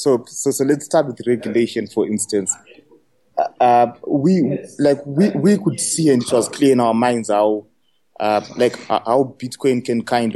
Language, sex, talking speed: English, male, 175 wpm